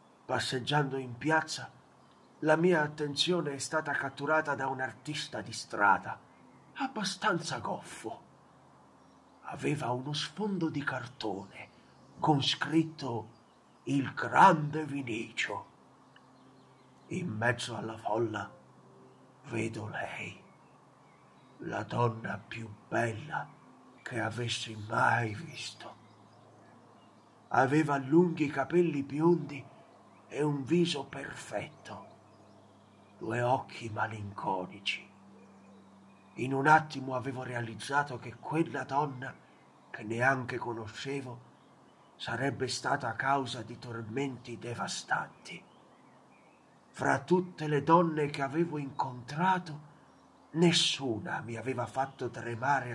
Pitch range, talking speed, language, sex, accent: 115-150 Hz, 90 wpm, Italian, male, native